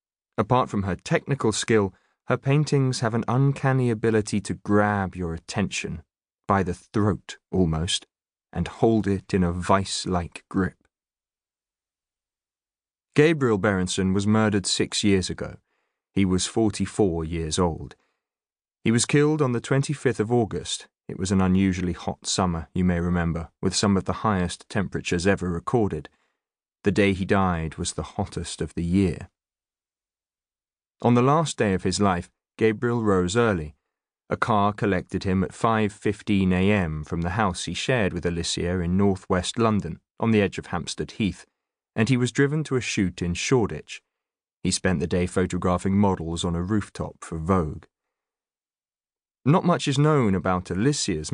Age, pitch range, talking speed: 30-49, 90-110 Hz, 155 wpm